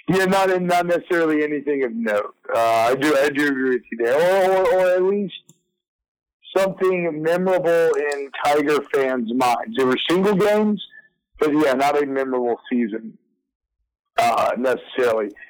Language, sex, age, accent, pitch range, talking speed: English, male, 50-69, American, 130-170 Hz, 155 wpm